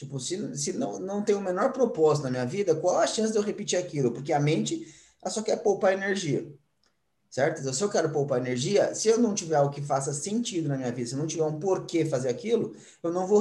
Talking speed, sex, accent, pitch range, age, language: 250 wpm, male, Brazilian, 155-210 Hz, 20-39, Portuguese